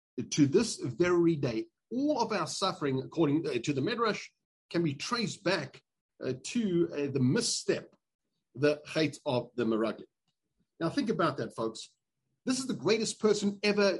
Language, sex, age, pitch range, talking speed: English, male, 40-59, 145-220 Hz, 160 wpm